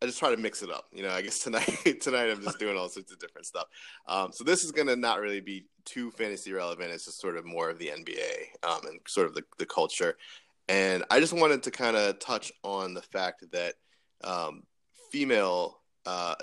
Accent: American